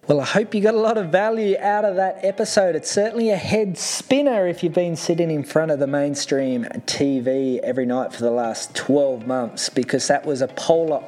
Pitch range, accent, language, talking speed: 155-195 Hz, Australian, English, 215 wpm